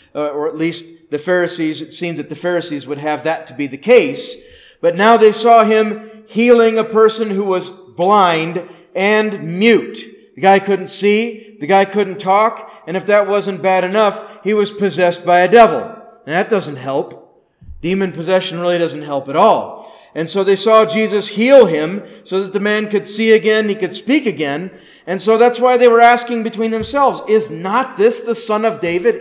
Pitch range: 170-230 Hz